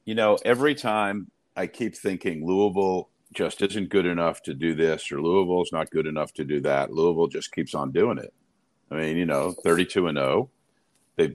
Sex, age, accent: male, 50-69, American